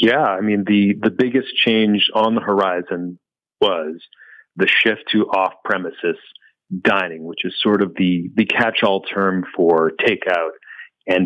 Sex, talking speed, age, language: male, 155 wpm, 40-59, English